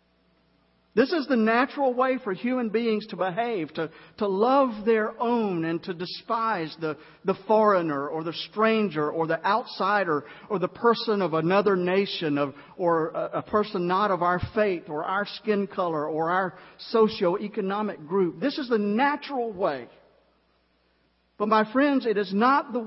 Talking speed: 160 wpm